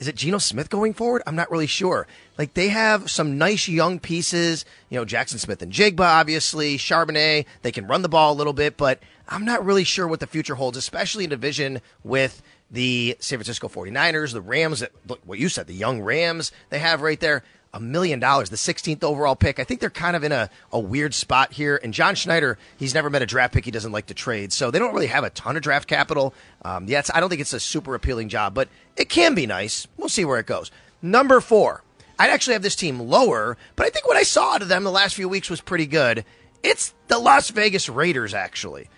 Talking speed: 235 wpm